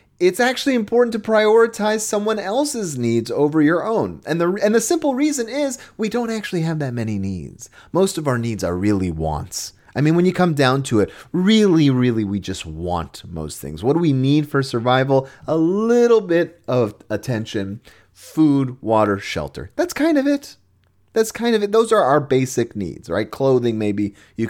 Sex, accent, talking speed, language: male, American, 190 wpm, English